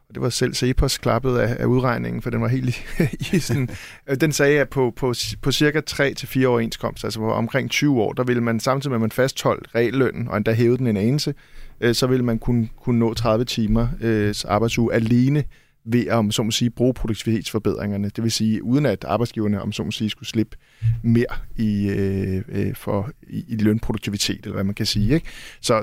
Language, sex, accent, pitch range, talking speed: Danish, male, native, 110-135 Hz, 190 wpm